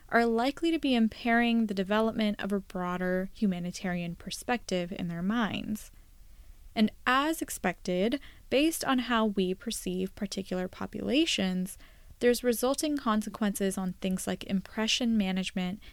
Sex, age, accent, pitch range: female, 10-29, American, 195-255 Hz